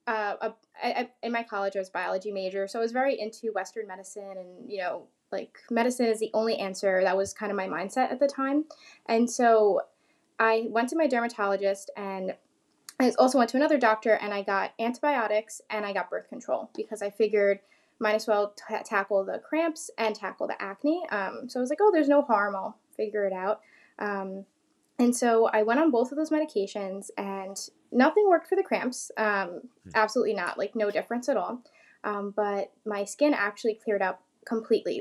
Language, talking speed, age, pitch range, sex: English, 200 wpm, 10-29, 200-250 Hz, female